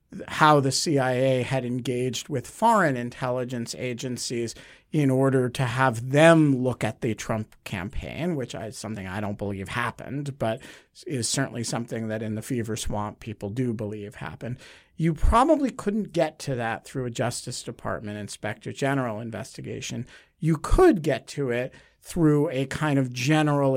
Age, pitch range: 50-69, 115-150 Hz